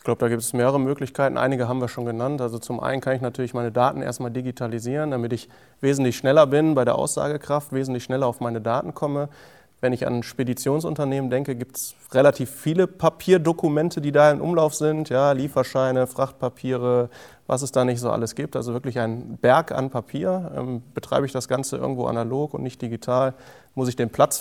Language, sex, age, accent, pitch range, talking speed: German, male, 30-49, German, 125-145 Hz, 200 wpm